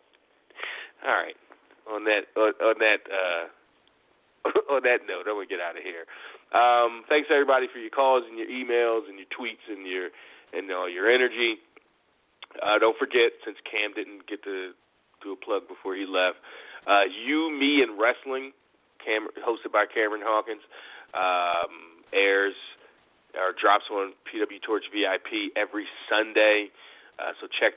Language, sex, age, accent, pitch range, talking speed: English, male, 30-49, American, 100-135 Hz, 160 wpm